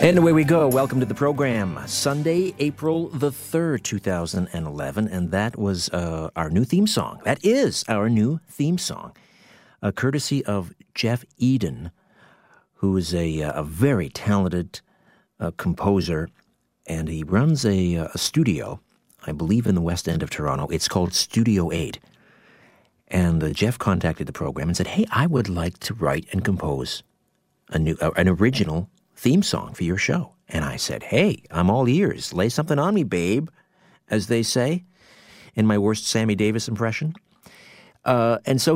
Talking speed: 170 wpm